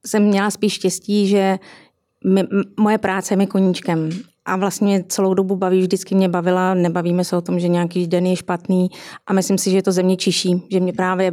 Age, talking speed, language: 30-49, 200 wpm, Czech